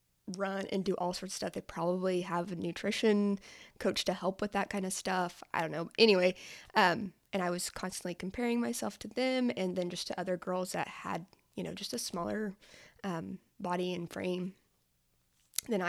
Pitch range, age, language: 175-215 Hz, 20-39, English